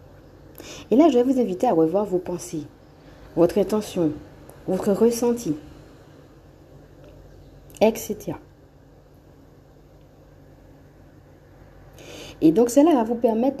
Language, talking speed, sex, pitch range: French, 95 wpm, female, 175-240 Hz